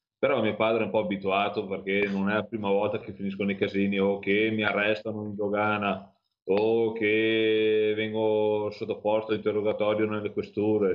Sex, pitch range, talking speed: male, 100-120 Hz, 170 wpm